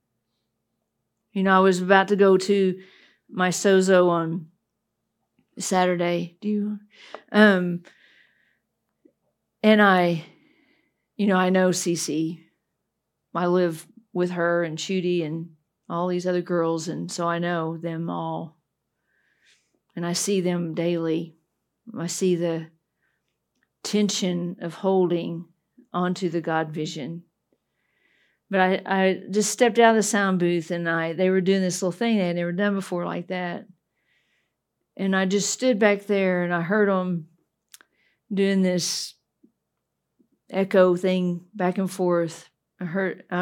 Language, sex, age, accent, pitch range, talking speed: English, female, 40-59, American, 175-210 Hz, 135 wpm